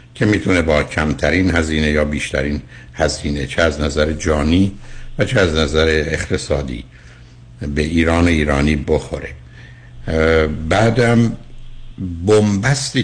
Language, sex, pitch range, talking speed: Persian, male, 75-95 Hz, 105 wpm